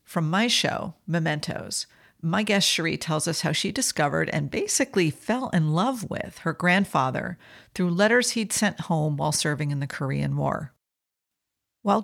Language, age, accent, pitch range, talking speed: English, 50-69, American, 155-205 Hz, 160 wpm